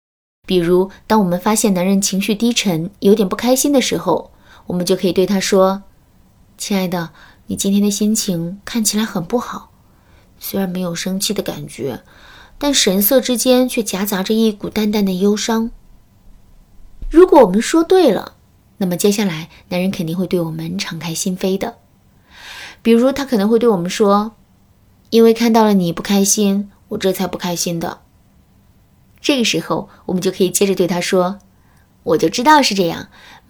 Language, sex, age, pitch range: Chinese, female, 20-39, 180-225 Hz